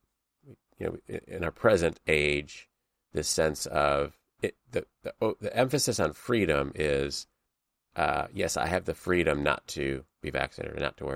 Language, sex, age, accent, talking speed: English, male, 30-49, American, 170 wpm